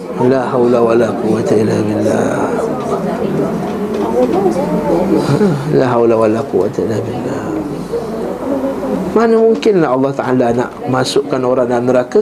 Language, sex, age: Malay, male, 20-39